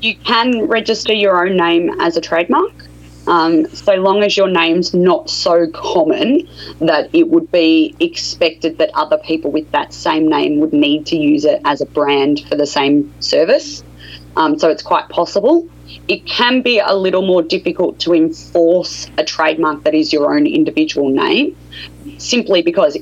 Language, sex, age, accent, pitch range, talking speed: English, female, 20-39, Australian, 145-245 Hz, 170 wpm